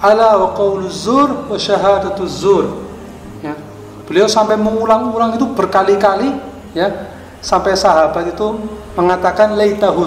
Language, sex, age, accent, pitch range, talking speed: Indonesian, male, 30-49, native, 160-200 Hz, 115 wpm